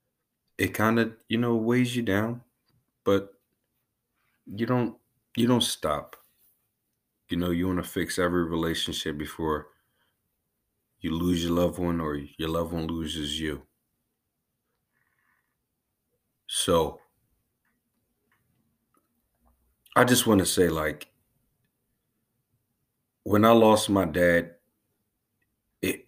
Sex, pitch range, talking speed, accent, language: male, 85-120 Hz, 110 wpm, American, English